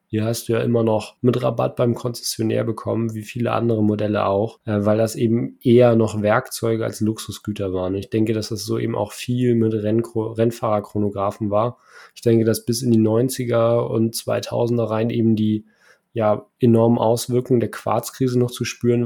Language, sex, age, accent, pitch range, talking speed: German, male, 20-39, German, 110-120 Hz, 175 wpm